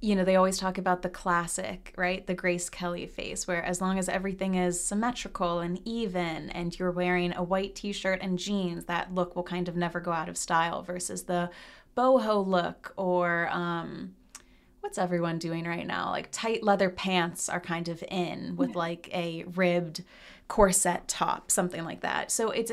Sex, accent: female, American